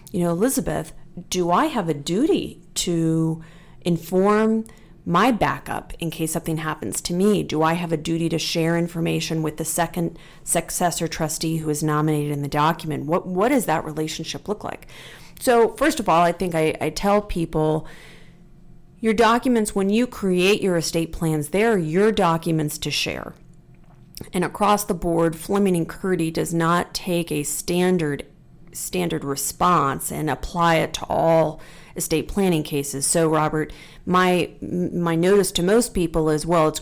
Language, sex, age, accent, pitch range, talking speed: English, female, 40-59, American, 155-185 Hz, 165 wpm